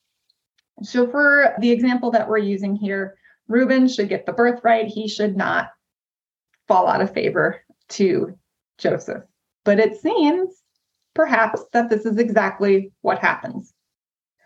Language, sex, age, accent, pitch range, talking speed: English, female, 20-39, American, 200-245 Hz, 135 wpm